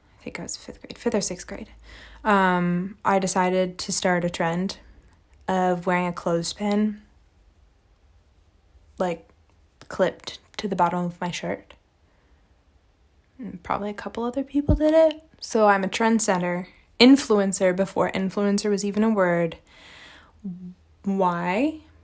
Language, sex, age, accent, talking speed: English, female, 20-39, American, 135 wpm